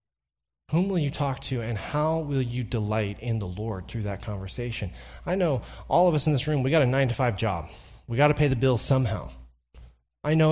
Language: English